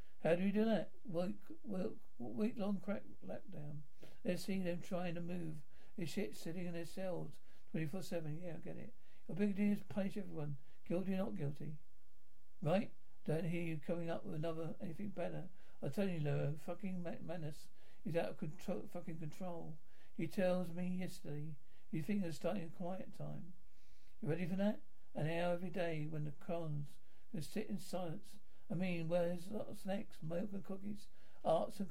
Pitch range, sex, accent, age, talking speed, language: 165-195 Hz, male, British, 60-79, 190 wpm, English